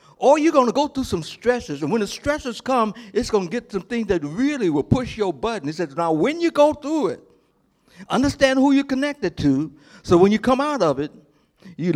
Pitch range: 170-250 Hz